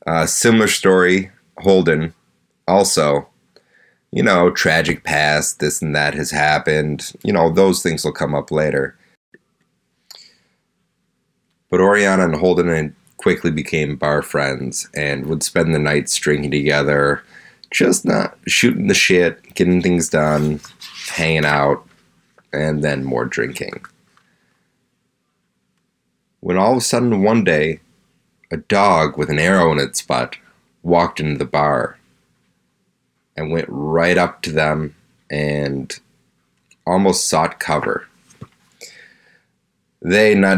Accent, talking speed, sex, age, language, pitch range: American, 120 wpm, male, 30-49, English, 75-85 Hz